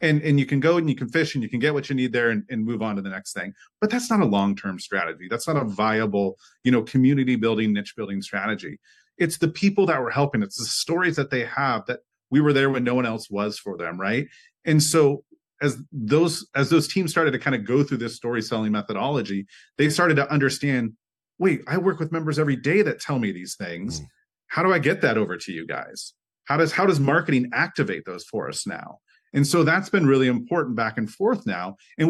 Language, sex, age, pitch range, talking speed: English, male, 30-49, 115-155 Hz, 245 wpm